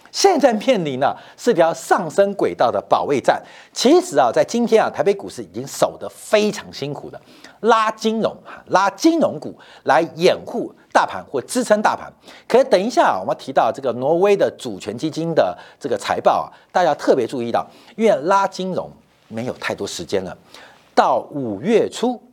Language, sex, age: Chinese, male, 50-69